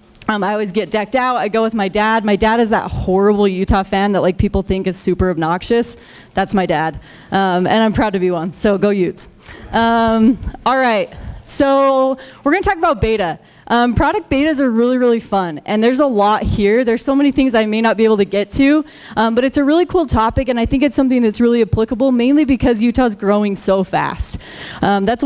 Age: 20-39